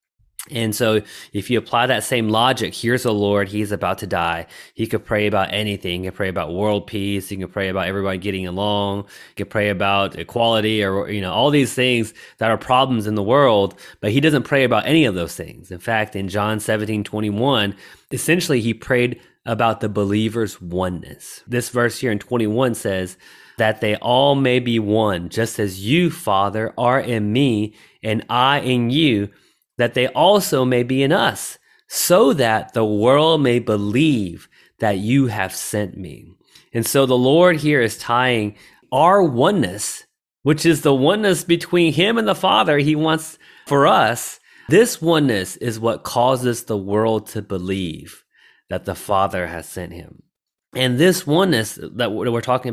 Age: 20-39